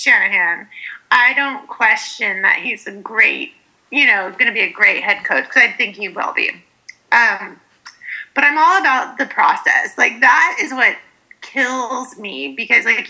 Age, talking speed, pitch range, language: 30-49, 175 wpm, 225-300 Hz, English